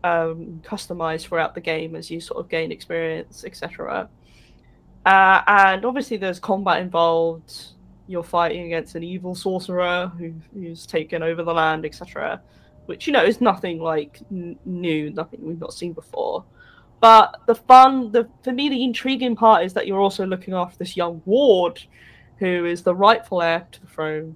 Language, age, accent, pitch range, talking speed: English, 20-39, British, 170-225 Hz, 165 wpm